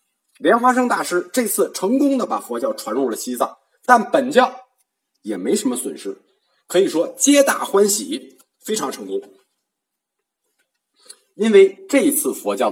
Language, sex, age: Chinese, male, 50-69